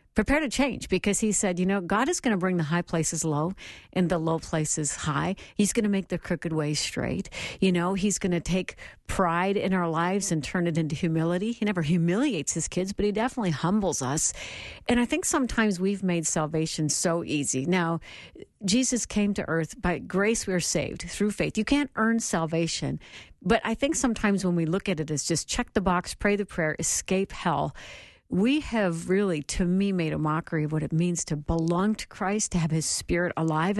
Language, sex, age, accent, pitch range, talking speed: English, female, 50-69, American, 170-210 Hz, 215 wpm